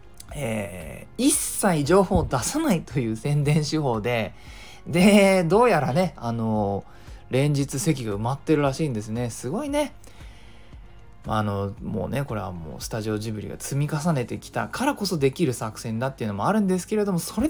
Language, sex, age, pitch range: Japanese, male, 20-39, 105-160 Hz